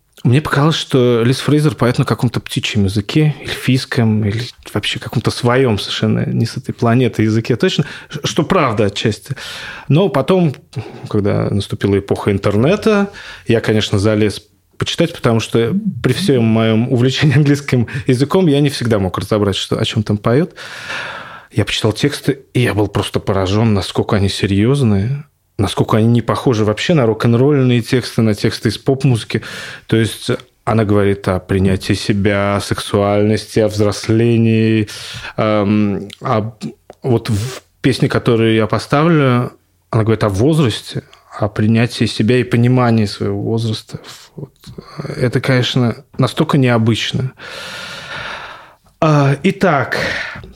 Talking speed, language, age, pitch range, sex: 130 wpm, Russian, 20-39, 105-135 Hz, male